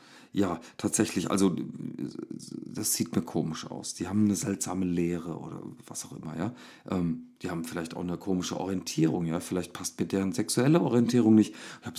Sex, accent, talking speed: male, German, 180 wpm